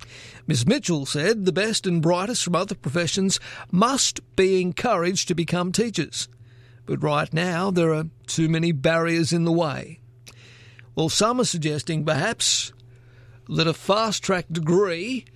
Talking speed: 145 wpm